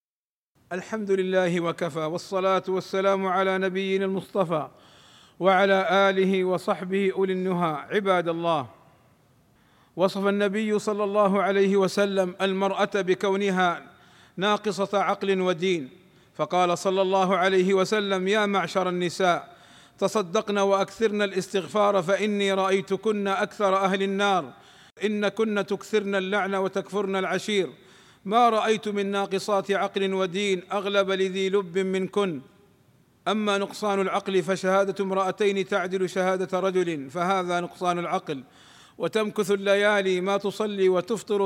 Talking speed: 105 wpm